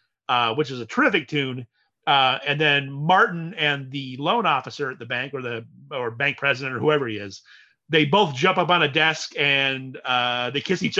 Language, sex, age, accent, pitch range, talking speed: English, male, 30-49, American, 130-165 Hz, 205 wpm